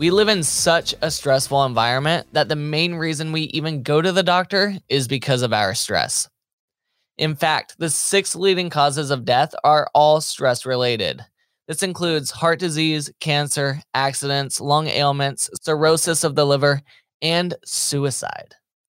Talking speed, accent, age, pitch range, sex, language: 150 wpm, American, 20-39, 135-175 Hz, male, English